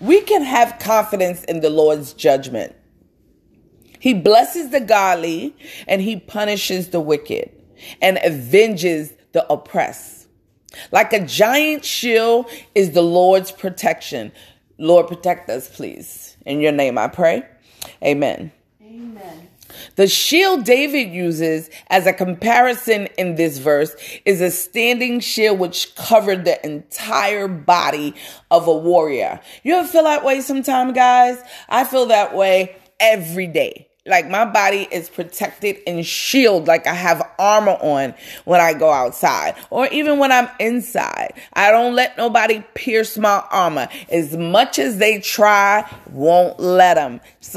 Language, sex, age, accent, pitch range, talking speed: English, female, 30-49, American, 175-240 Hz, 140 wpm